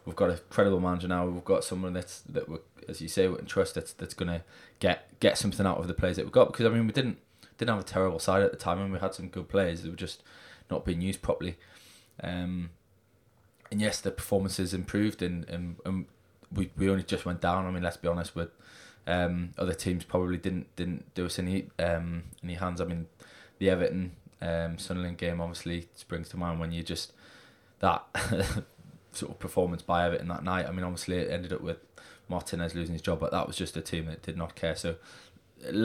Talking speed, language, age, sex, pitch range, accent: 230 wpm, English, 20-39, male, 85-95 Hz, British